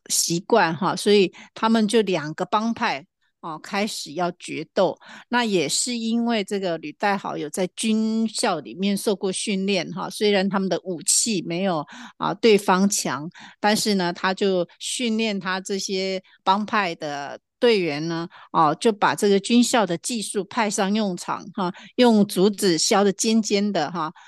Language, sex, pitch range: Chinese, female, 175-215 Hz